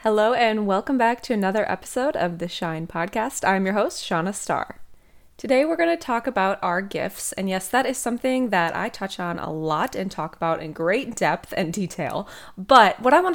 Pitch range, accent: 175-220 Hz, American